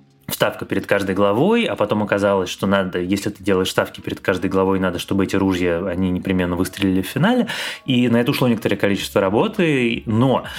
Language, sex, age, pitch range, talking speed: Russian, male, 20-39, 100-120 Hz, 185 wpm